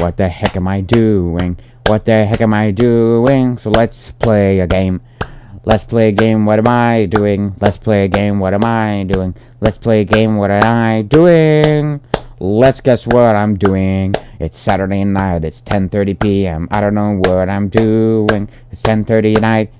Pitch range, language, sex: 95-115 Hz, English, male